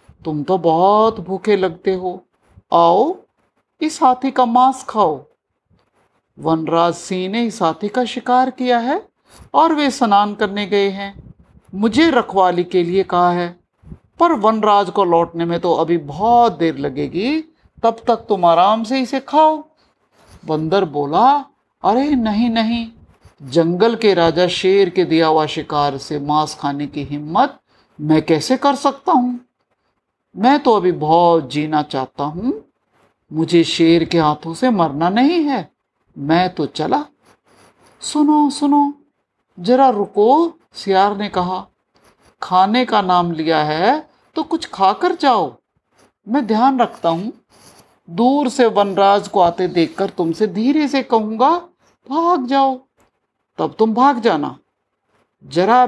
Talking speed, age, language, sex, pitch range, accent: 135 wpm, 50-69, Hindi, male, 170-260 Hz, native